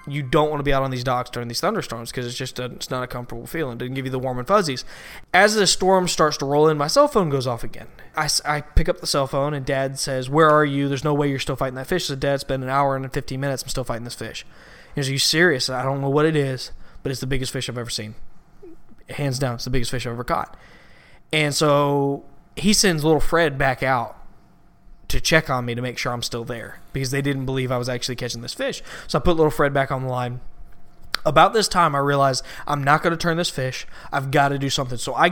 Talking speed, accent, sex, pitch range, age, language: 275 wpm, American, male, 130-155 Hz, 20-39, English